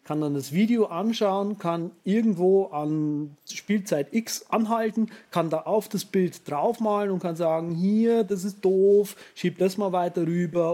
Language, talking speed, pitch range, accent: German, 170 wpm, 150-195 Hz, German